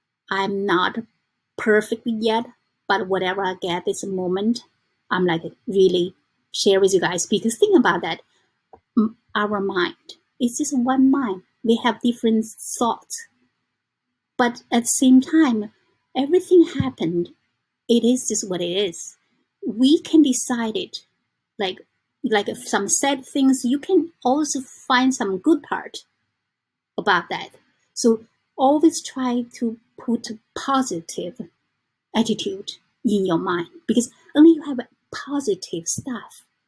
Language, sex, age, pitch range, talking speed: English, female, 30-49, 200-275 Hz, 130 wpm